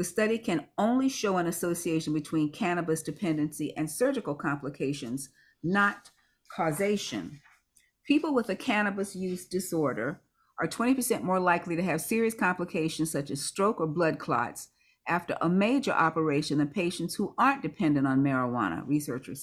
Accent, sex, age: American, female, 50-69